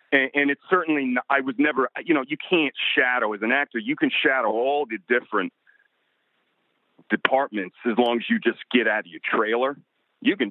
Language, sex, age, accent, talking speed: English, male, 40-59, American, 195 wpm